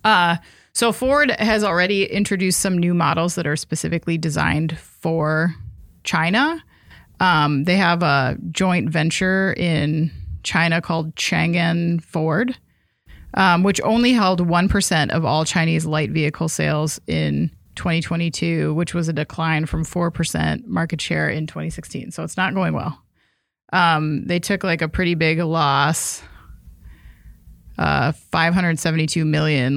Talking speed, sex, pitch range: 130 wpm, female, 160-185 Hz